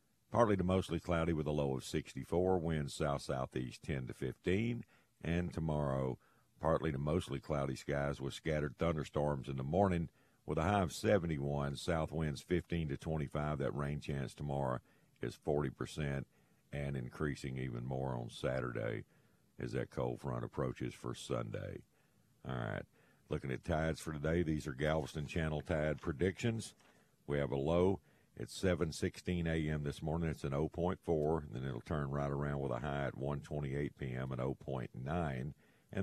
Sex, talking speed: male, 160 wpm